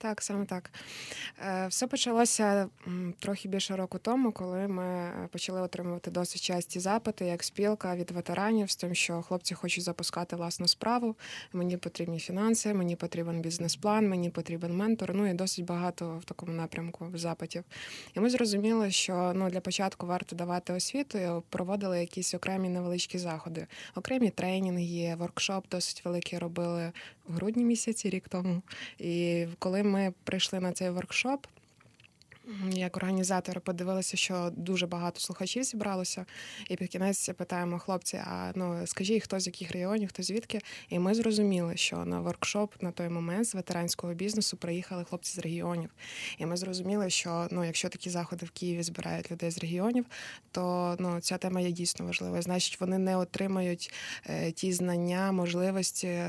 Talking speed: 155 wpm